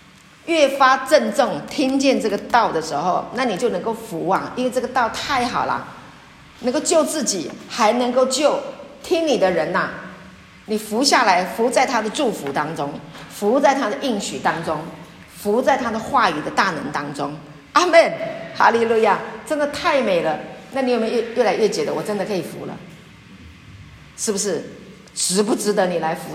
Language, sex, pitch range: Chinese, female, 210-295 Hz